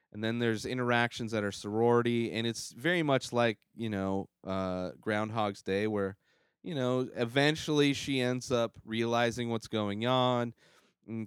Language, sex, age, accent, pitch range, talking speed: English, male, 30-49, American, 100-120 Hz, 155 wpm